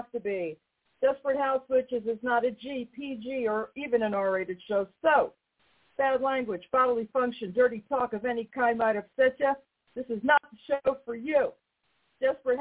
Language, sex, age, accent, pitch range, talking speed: English, female, 50-69, American, 215-275 Hz, 170 wpm